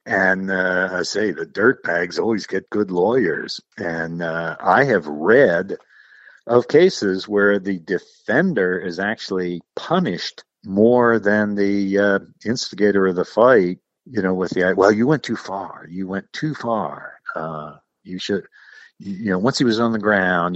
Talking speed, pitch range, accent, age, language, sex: 160 wpm, 90-110 Hz, American, 50-69, English, male